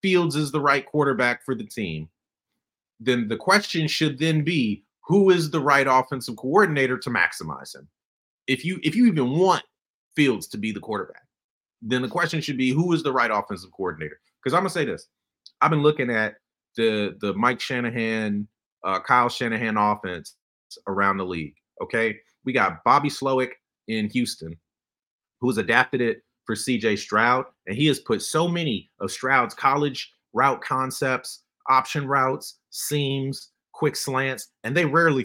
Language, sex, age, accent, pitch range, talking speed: English, male, 30-49, American, 105-150 Hz, 165 wpm